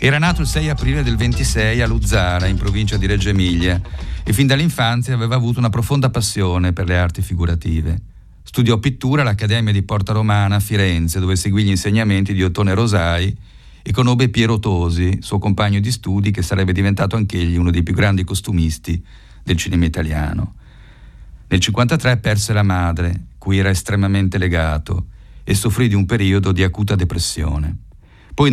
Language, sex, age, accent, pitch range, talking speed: Italian, male, 40-59, native, 95-120 Hz, 165 wpm